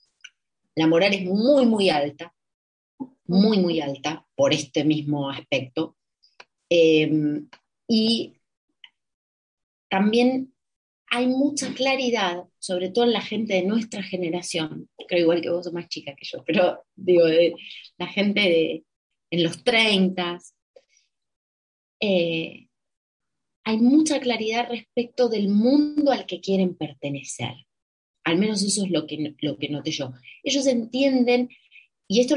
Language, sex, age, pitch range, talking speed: Spanish, female, 30-49, 160-240 Hz, 125 wpm